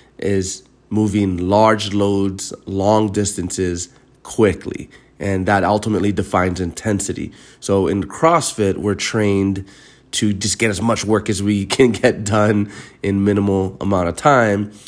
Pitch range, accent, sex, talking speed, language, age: 95-110 Hz, American, male, 135 wpm, English, 30-49